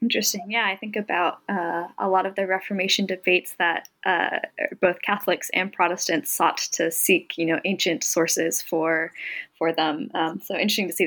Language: English